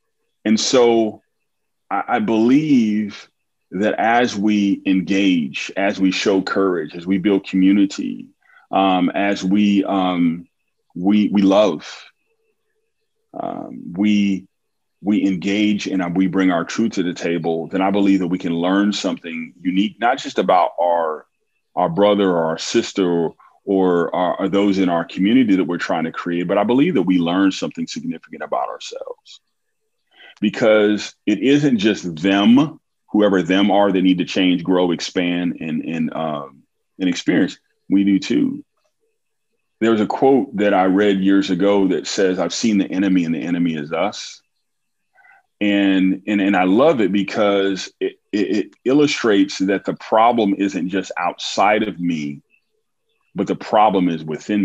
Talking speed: 155 wpm